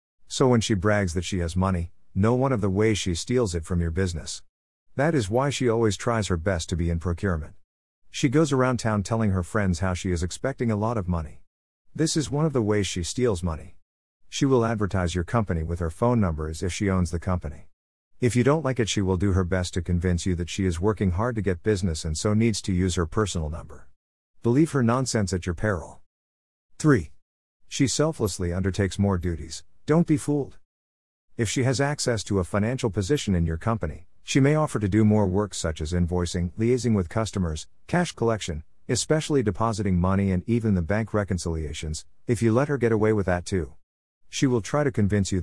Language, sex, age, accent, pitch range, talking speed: English, male, 50-69, American, 90-115 Hz, 215 wpm